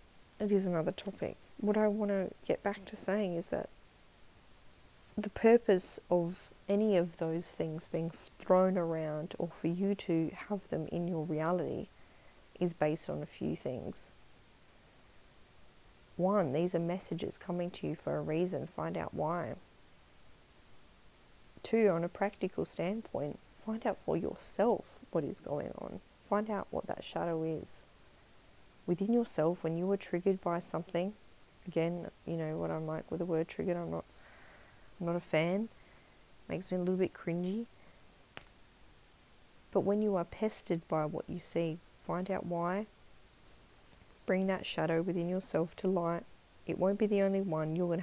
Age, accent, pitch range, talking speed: 30-49, Australian, 165-200 Hz, 160 wpm